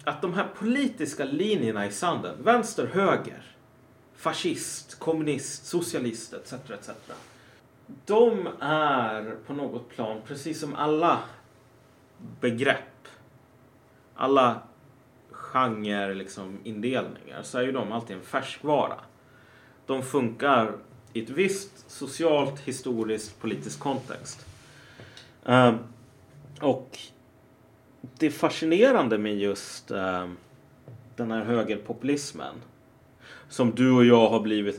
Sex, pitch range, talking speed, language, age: male, 115-140 Hz, 100 wpm, Swedish, 30-49